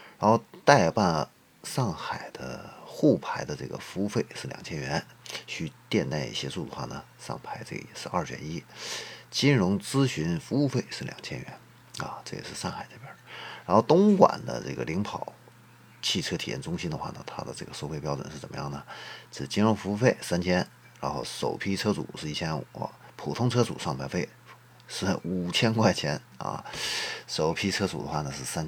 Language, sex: Chinese, male